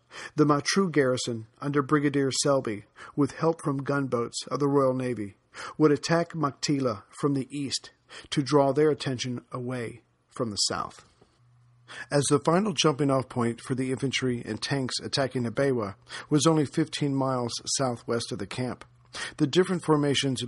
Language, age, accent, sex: English, 50-69, American, male